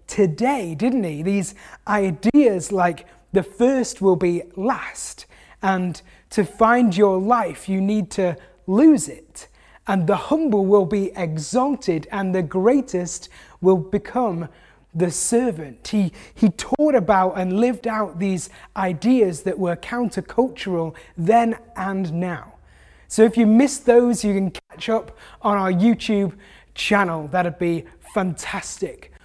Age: 20-39